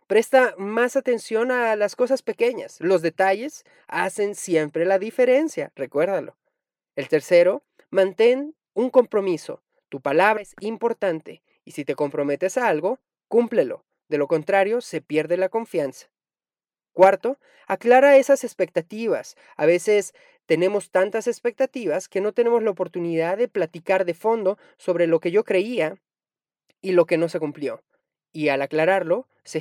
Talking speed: 140 wpm